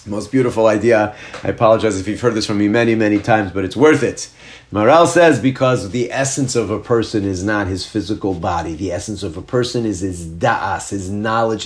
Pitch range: 110-165 Hz